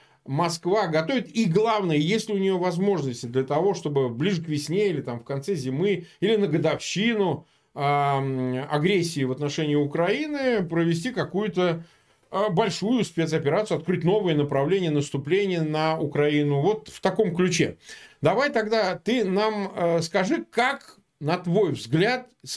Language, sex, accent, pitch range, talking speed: Russian, male, native, 150-200 Hz, 145 wpm